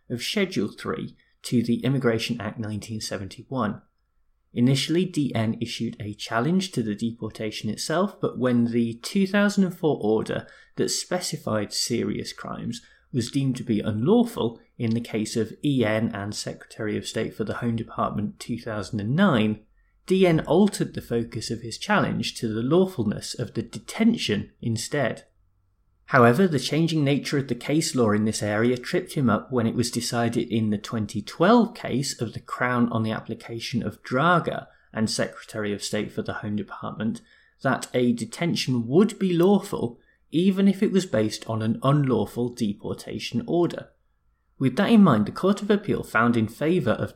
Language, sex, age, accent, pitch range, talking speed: English, male, 20-39, British, 110-155 Hz, 160 wpm